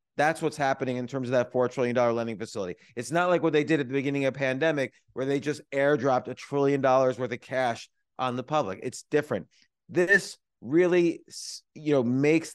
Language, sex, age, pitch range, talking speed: English, male, 30-49, 130-160 Hz, 205 wpm